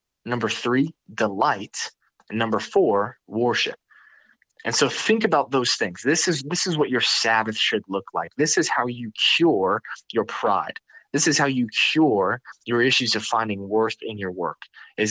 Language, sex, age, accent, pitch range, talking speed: English, male, 20-39, American, 105-135 Hz, 170 wpm